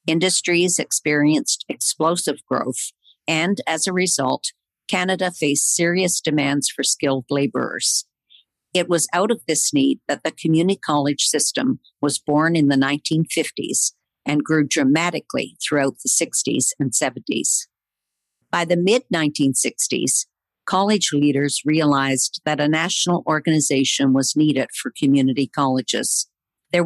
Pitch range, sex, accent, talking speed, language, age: 145-180 Hz, female, American, 125 wpm, English, 50-69